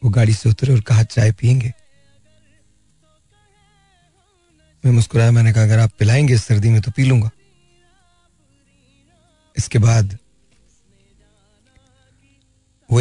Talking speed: 105 wpm